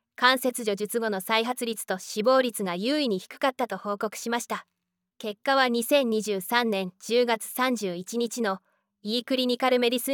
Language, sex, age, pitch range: Japanese, female, 20-39, 205-250 Hz